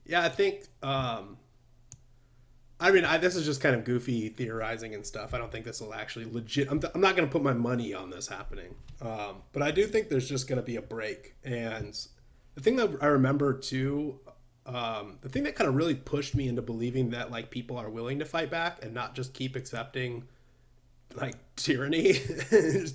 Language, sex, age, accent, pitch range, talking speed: English, male, 30-49, American, 120-145 Hz, 210 wpm